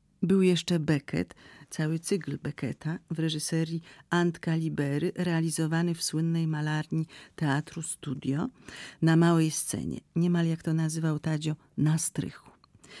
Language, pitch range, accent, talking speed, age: Polish, 150-175 Hz, native, 120 wpm, 40-59